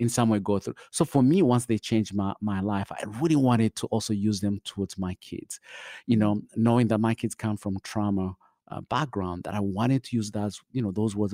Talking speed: 235 wpm